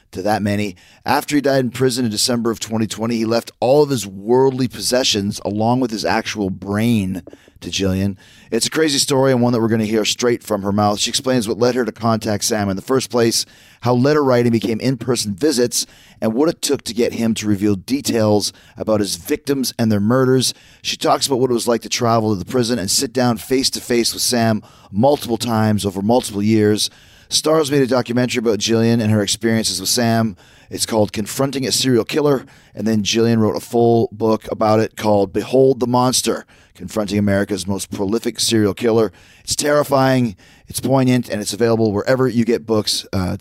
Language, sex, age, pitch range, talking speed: English, male, 30-49, 105-125 Hz, 205 wpm